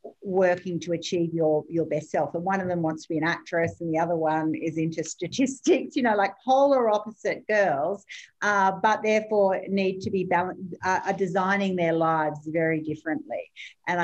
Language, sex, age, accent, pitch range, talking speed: English, female, 50-69, Australian, 155-205 Hz, 190 wpm